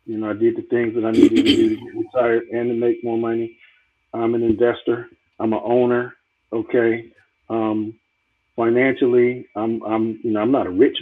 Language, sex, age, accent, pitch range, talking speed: English, male, 50-69, American, 115-160 Hz, 195 wpm